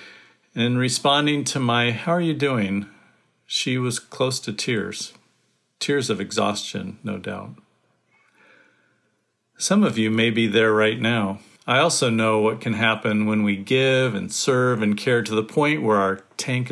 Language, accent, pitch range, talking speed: English, American, 105-140 Hz, 160 wpm